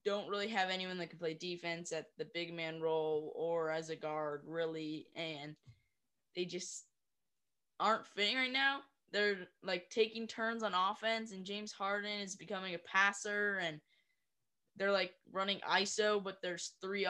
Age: 10-29